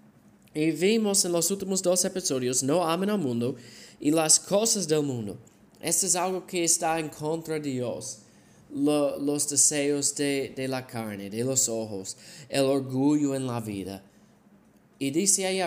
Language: Spanish